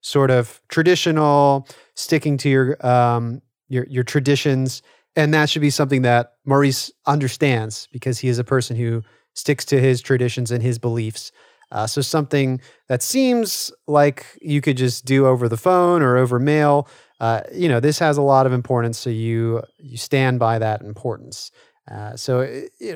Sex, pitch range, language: male, 125-155 Hz, English